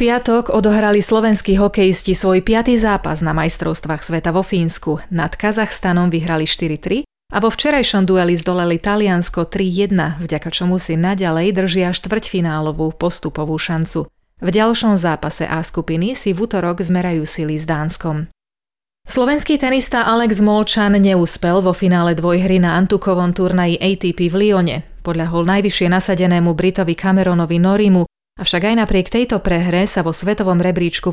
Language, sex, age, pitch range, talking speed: Slovak, female, 30-49, 165-205 Hz, 145 wpm